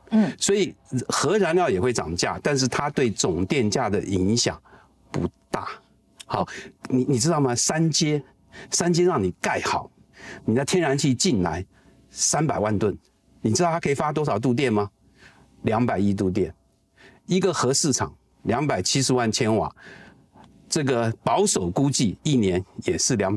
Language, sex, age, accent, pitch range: Chinese, male, 50-69, native, 100-145 Hz